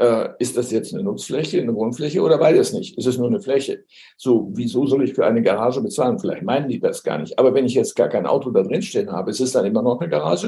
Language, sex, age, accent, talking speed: German, male, 60-79, German, 275 wpm